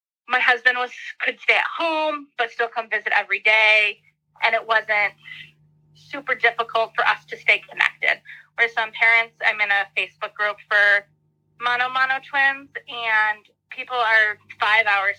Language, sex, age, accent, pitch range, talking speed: English, female, 20-39, American, 200-240 Hz, 160 wpm